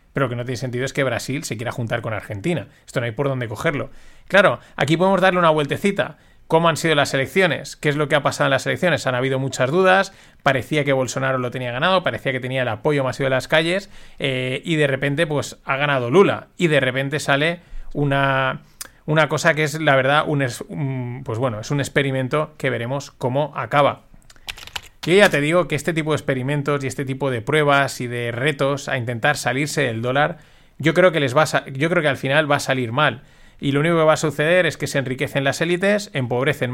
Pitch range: 130-160 Hz